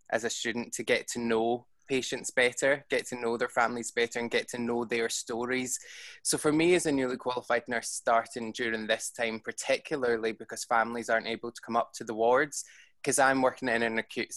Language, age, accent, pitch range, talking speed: English, 20-39, British, 115-130 Hz, 210 wpm